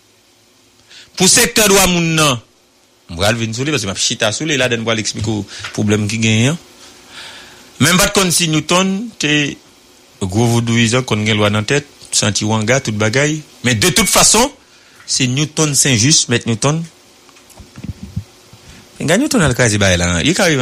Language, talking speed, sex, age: English, 115 wpm, male, 60-79